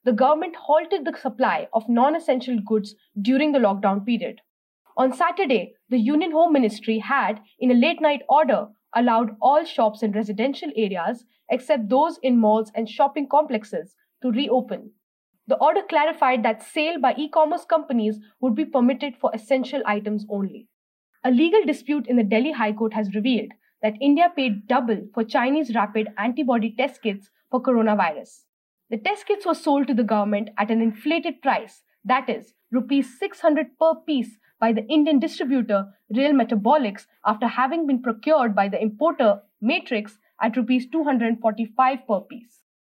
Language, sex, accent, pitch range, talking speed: English, female, Indian, 220-295 Hz, 155 wpm